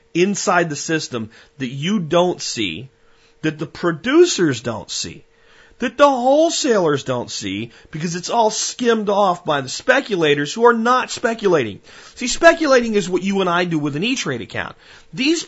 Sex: male